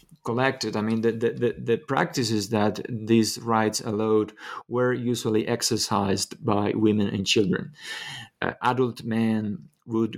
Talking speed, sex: 130 wpm, male